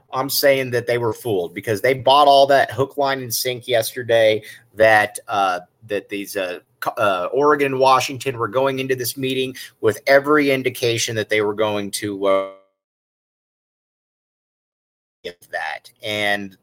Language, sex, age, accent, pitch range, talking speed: English, male, 30-49, American, 110-135 Hz, 150 wpm